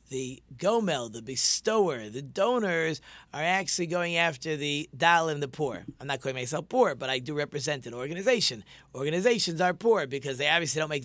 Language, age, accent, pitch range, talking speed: English, 40-59, American, 140-190 Hz, 185 wpm